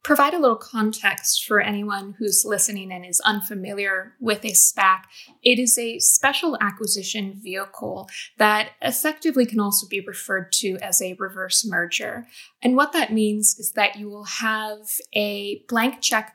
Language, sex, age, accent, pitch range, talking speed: English, female, 20-39, American, 205-240 Hz, 160 wpm